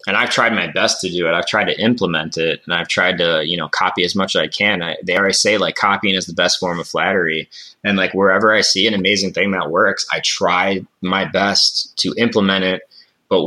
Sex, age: male, 20-39